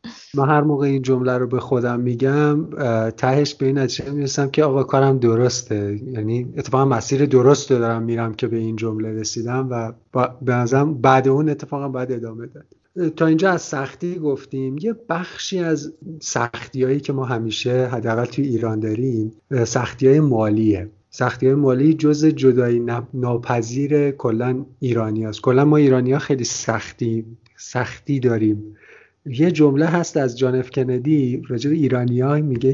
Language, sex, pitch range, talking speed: Persian, male, 120-150 Hz, 155 wpm